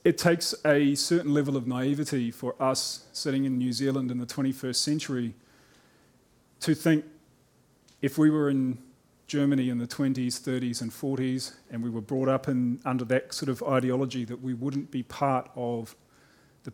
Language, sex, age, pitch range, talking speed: English, male, 30-49, 125-150 Hz, 170 wpm